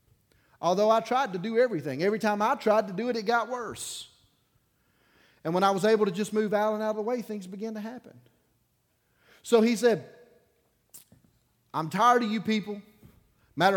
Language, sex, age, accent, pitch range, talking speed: English, male, 40-59, American, 120-185 Hz, 185 wpm